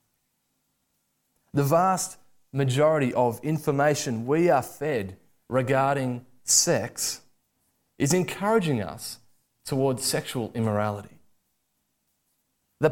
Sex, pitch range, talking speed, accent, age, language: male, 130-195 Hz, 80 wpm, Australian, 20-39, English